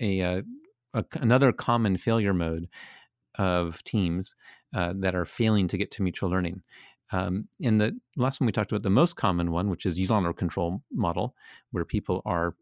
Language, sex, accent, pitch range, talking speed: English, male, American, 95-115 Hz, 180 wpm